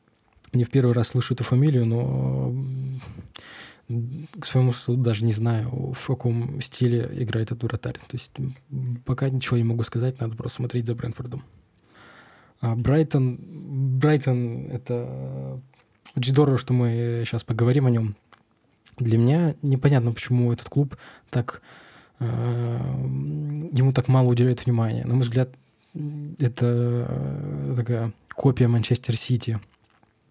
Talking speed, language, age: 125 wpm, Russian, 20-39